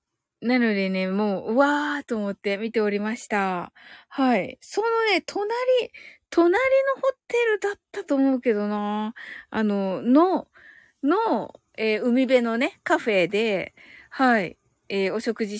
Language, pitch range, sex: Japanese, 205-295 Hz, female